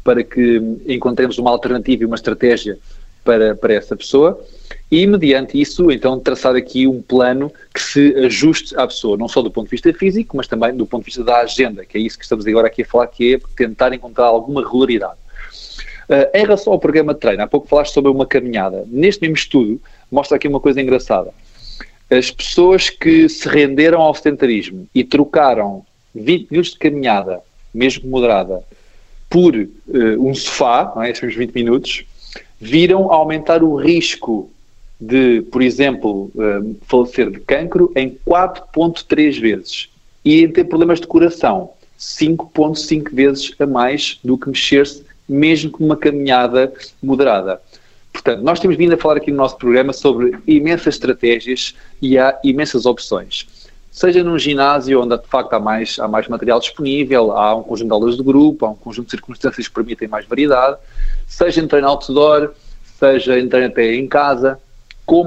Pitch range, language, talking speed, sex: 120-150 Hz, Portuguese, 170 wpm, male